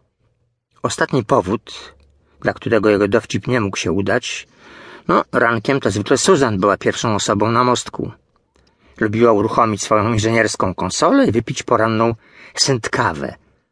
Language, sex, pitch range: Polish, male, 105-125 Hz